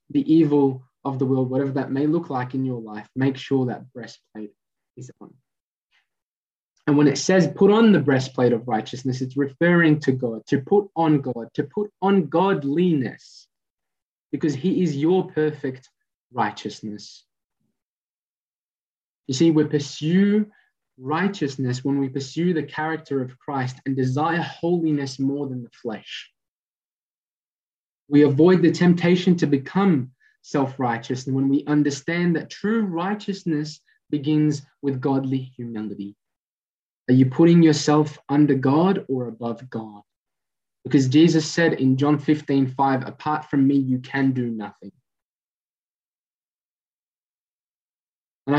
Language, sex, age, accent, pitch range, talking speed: English, male, 20-39, Australian, 130-165 Hz, 135 wpm